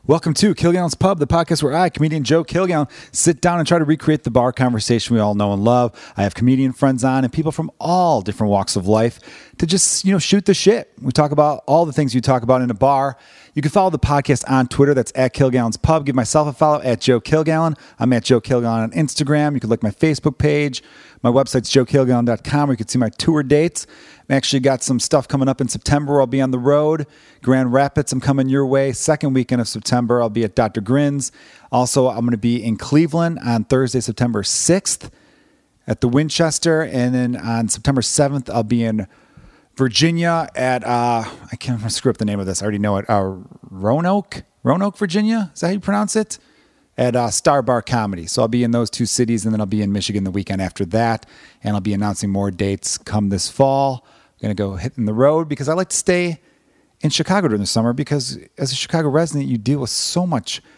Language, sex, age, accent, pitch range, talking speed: English, male, 40-59, American, 115-150 Hz, 230 wpm